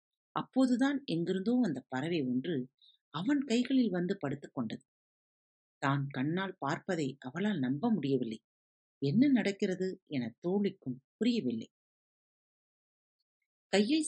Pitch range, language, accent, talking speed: 135-225 Hz, Tamil, native, 95 wpm